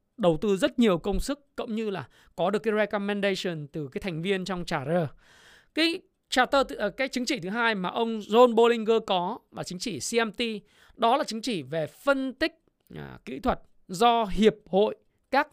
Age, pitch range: 20-39, 180-235 Hz